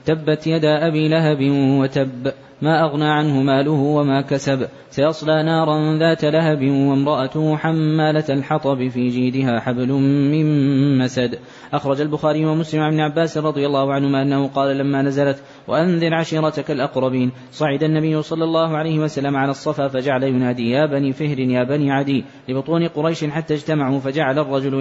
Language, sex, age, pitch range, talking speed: Arabic, male, 20-39, 135-155 Hz, 145 wpm